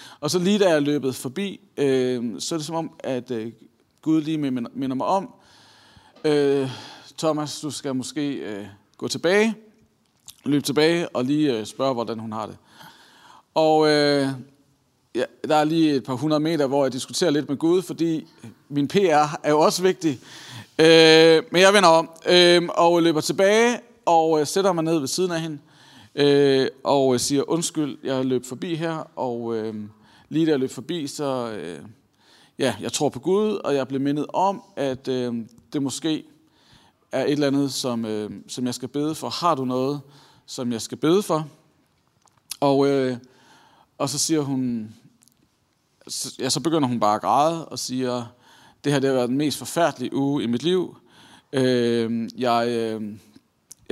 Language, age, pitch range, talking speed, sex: Danish, 40-59, 125-160 Hz, 175 wpm, male